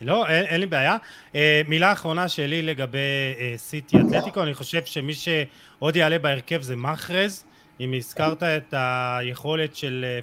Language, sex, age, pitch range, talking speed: Hebrew, male, 30-49, 135-175 Hz, 160 wpm